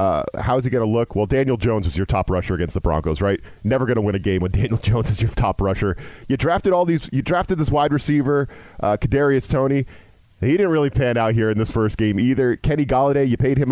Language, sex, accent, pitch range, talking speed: English, male, American, 105-140 Hz, 260 wpm